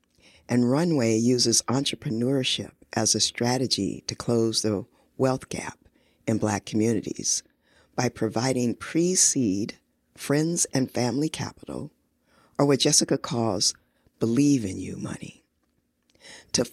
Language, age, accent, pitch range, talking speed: English, 50-69, American, 110-135 Hz, 105 wpm